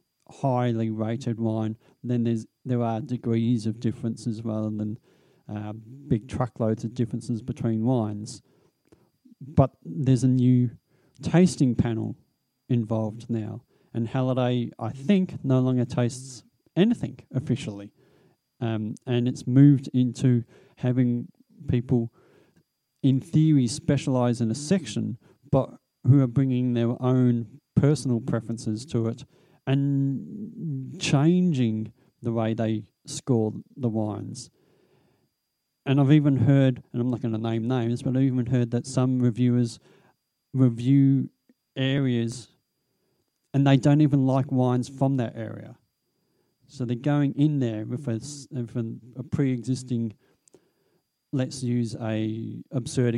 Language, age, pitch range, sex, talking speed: English, 40-59, 115-135 Hz, male, 125 wpm